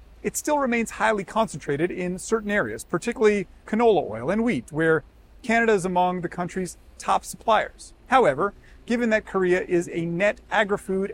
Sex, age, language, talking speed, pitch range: male, 40-59, English, 155 wpm, 150-210 Hz